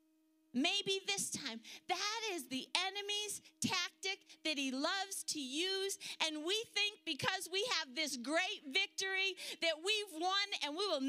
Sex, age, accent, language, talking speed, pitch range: female, 40-59, American, English, 150 wpm, 315-405 Hz